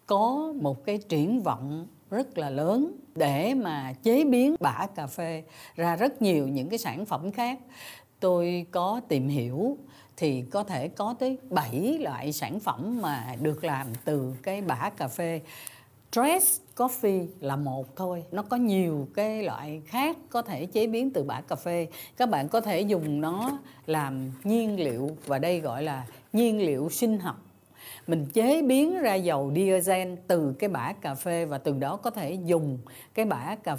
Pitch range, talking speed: 145-215 Hz, 180 wpm